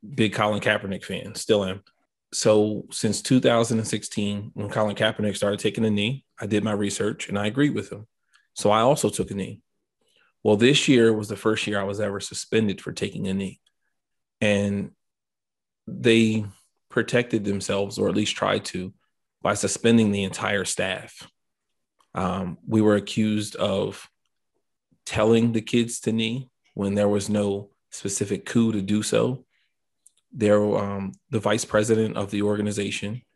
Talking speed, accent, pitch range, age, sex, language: 155 wpm, American, 100-115 Hz, 30-49, male, English